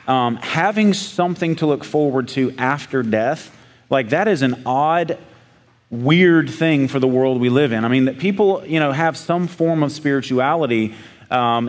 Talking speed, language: 170 wpm, English